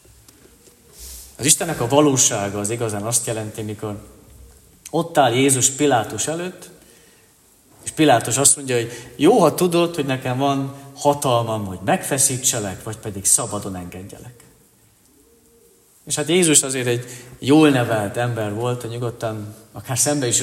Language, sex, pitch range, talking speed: Hungarian, male, 110-150 Hz, 135 wpm